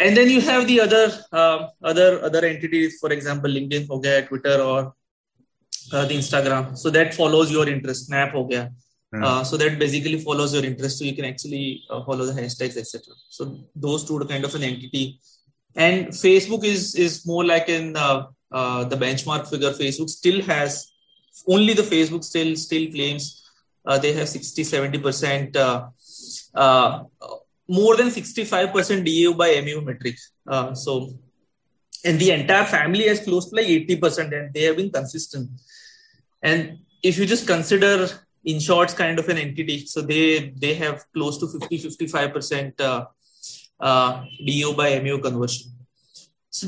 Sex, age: male, 20-39